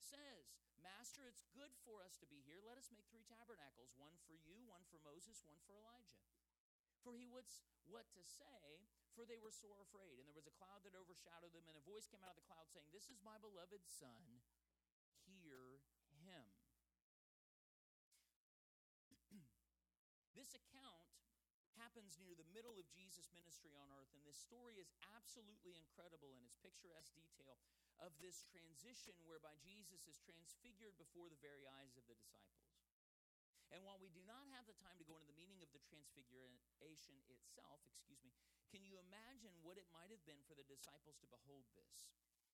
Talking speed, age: 180 wpm, 40-59